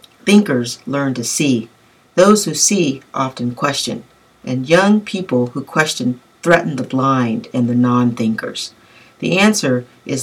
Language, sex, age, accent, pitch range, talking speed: English, female, 40-59, American, 120-160 Hz, 135 wpm